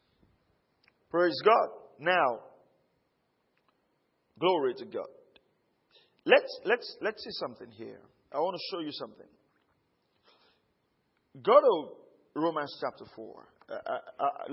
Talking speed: 105 wpm